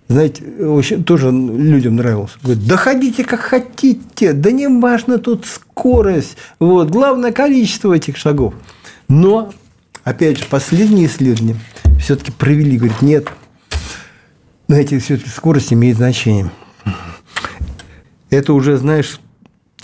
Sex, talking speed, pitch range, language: male, 110 wpm, 125-170 Hz, Russian